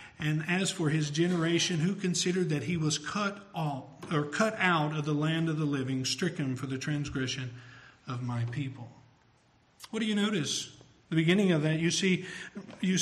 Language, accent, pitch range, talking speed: English, American, 155-195 Hz, 180 wpm